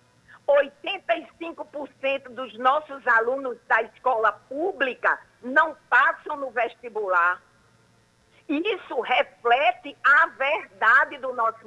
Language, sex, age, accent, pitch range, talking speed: Portuguese, female, 50-69, Brazilian, 250-320 Hz, 80 wpm